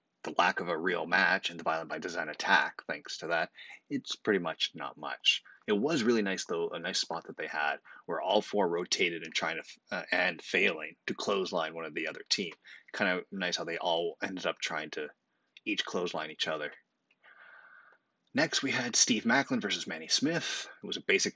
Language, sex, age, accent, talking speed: English, male, 30-49, American, 210 wpm